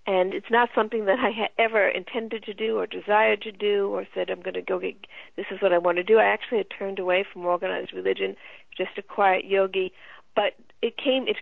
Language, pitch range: English, 195-235 Hz